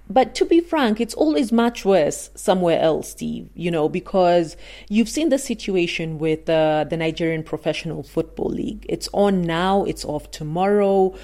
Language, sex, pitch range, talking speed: English, female, 160-230 Hz, 165 wpm